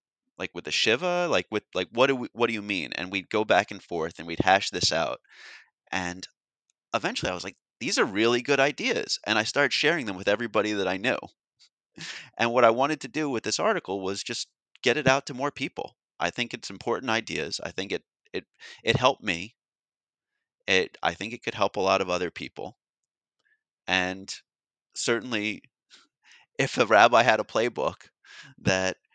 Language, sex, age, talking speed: English, male, 30-49, 195 wpm